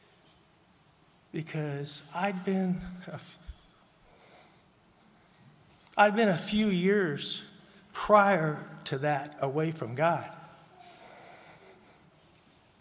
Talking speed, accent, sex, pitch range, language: 70 wpm, American, male, 140-175 Hz, English